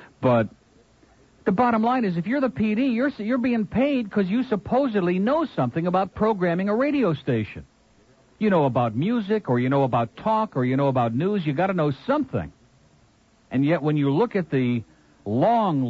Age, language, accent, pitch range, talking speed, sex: 60-79, English, American, 125-195 Hz, 190 wpm, male